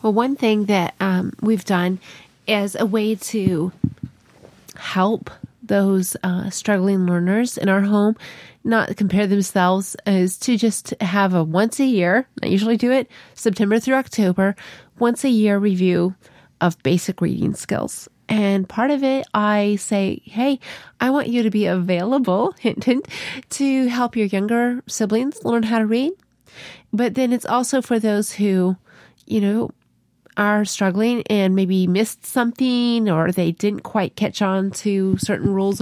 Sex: female